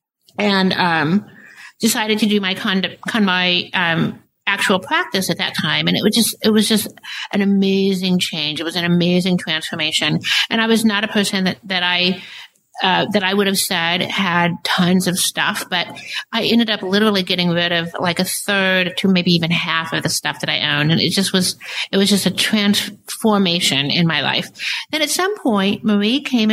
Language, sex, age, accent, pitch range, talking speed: English, female, 50-69, American, 175-215 Hz, 195 wpm